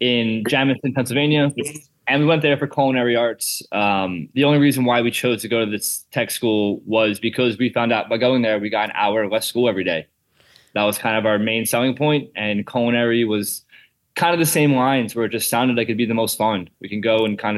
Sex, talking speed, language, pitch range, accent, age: male, 240 wpm, English, 105-120 Hz, American, 20-39